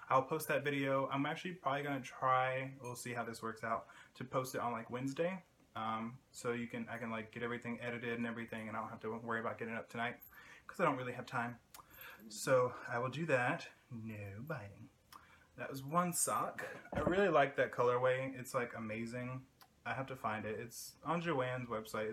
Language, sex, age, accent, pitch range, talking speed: English, male, 20-39, American, 115-135 Hz, 210 wpm